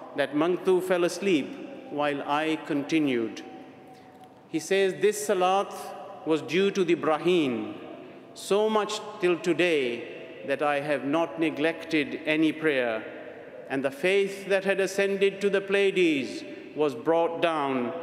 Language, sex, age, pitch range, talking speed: English, male, 50-69, 145-190 Hz, 130 wpm